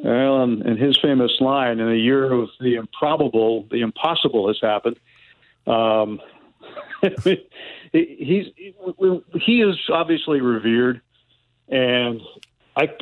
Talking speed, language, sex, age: 105 wpm, English, male, 50-69